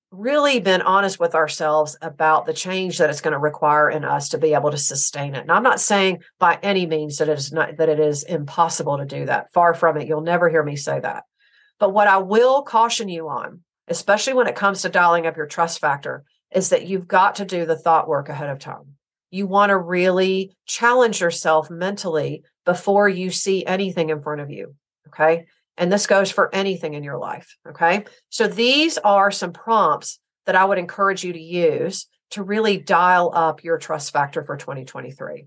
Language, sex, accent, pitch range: English, female, American, 155-195 Hz